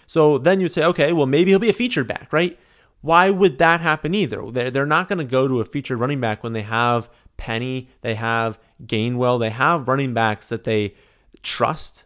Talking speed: 215 wpm